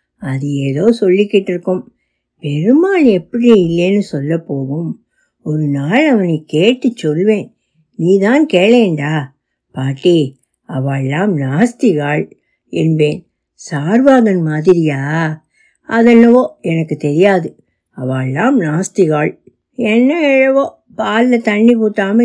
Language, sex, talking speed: Tamil, female, 85 wpm